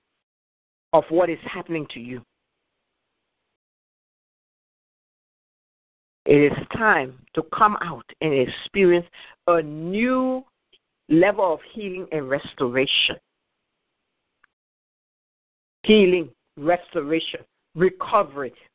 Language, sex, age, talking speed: English, female, 60-79, 75 wpm